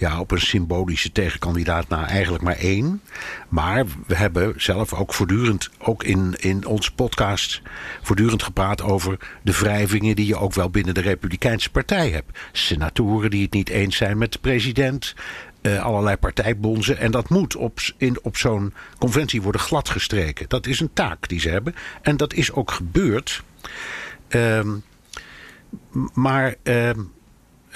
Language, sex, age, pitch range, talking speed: Dutch, male, 60-79, 100-135 Hz, 155 wpm